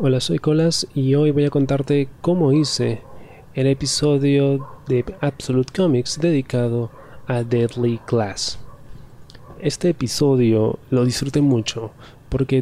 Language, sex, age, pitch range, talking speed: Spanish, male, 30-49, 110-135 Hz, 120 wpm